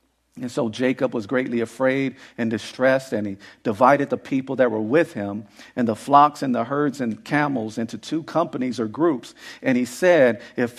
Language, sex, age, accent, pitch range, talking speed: English, male, 50-69, American, 130-170 Hz, 190 wpm